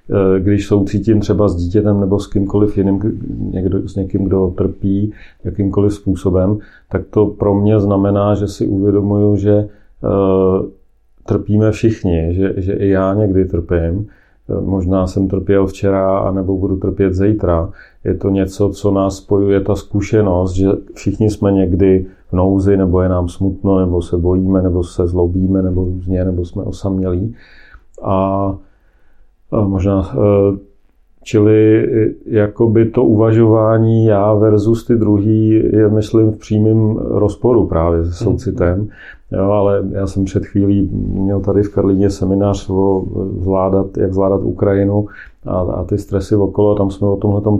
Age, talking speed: 40-59, 145 wpm